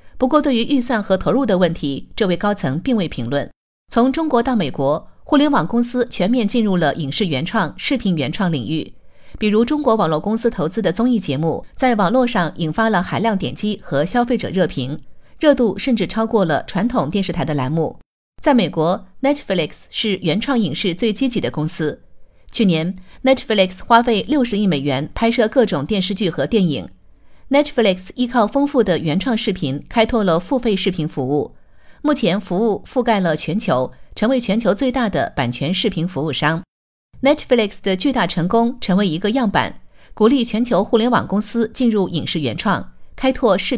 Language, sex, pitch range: Chinese, female, 170-240 Hz